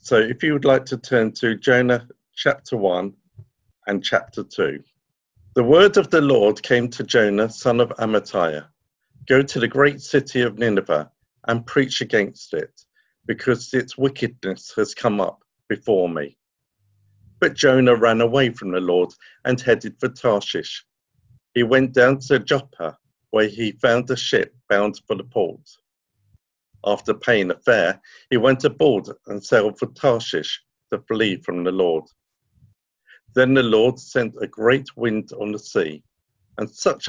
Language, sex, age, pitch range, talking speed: English, male, 50-69, 100-130 Hz, 155 wpm